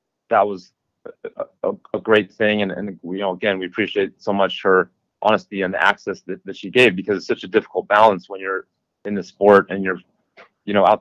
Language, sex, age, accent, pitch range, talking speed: English, male, 30-49, American, 90-105 Hz, 230 wpm